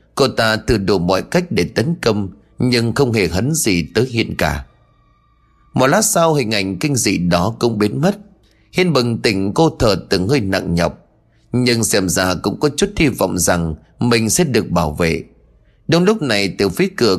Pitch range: 90-145 Hz